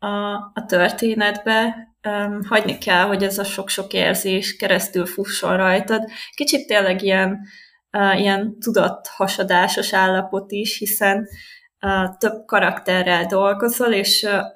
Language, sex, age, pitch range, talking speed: Hungarian, female, 20-39, 190-220 Hz, 100 wpm